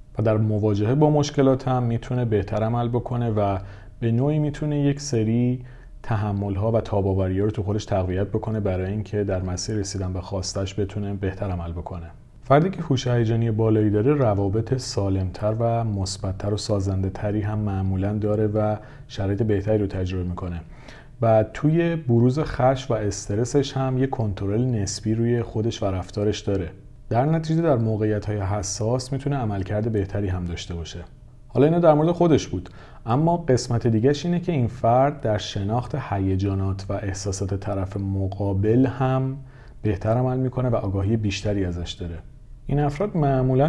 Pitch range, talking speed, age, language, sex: 100-125 Hz, 160 wpm, 40-59, Persian, male